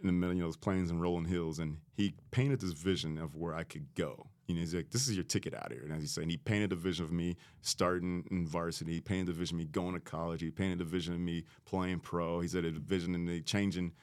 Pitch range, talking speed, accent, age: 85-100 Hz, 290 wpm, American, 30-49